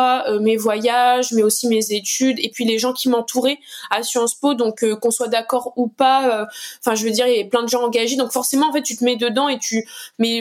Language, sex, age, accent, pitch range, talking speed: French, female, 20-39, French, 215-250 Hz, 260 wpm